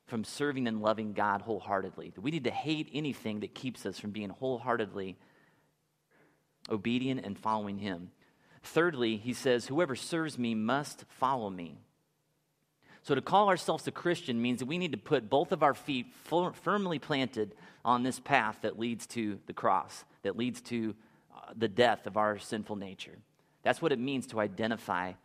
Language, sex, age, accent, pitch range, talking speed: English, male, 30-49, American, 110-150 Hz, 170 wpm